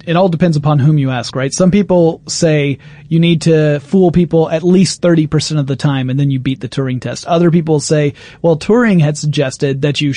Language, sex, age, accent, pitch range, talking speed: English, male, 30-49, American, 145-170 Hz, 225 wpm